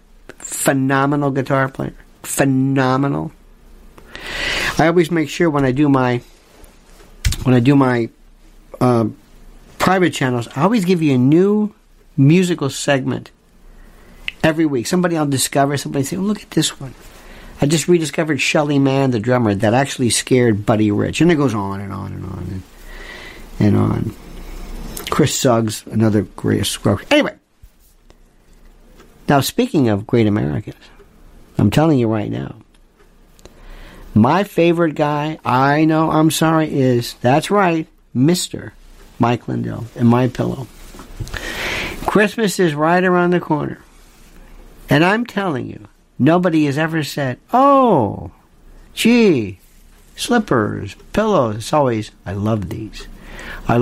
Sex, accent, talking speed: male, American, 130 wpm